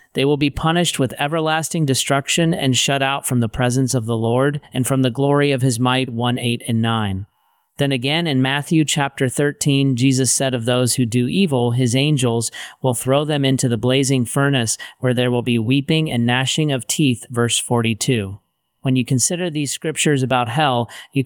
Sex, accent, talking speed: male, American, 190 wpm